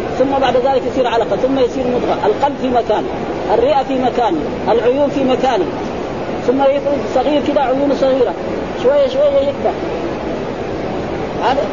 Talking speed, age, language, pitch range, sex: 135 wpm, 40-59, Arabic, 245-310 Hz, female